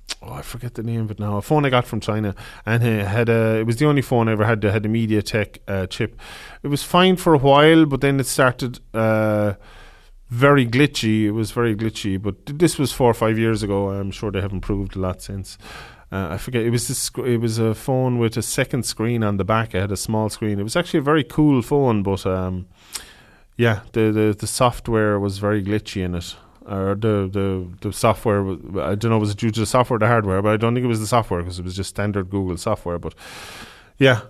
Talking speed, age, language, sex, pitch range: 250 wpm, 30-49, English, male, 105-130 Hz